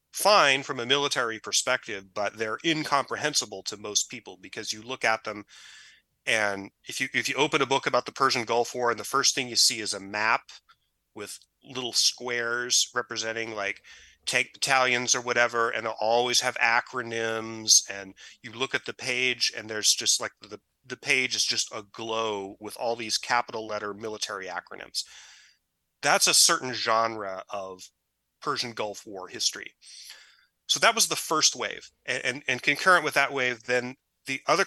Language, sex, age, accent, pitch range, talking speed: English, male, 30-49, American, 110-130 Hz, 175 wpm